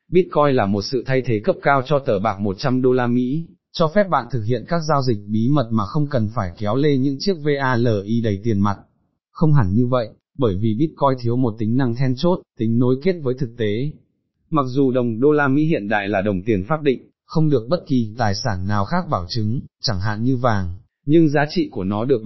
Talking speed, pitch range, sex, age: 240 wpm, 110-145 Hz, male, 20-39